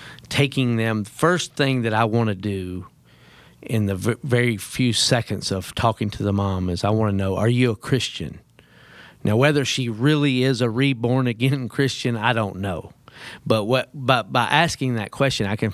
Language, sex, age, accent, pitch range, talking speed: English, male, 40-59, American, 100-125 Hz, 190 wpm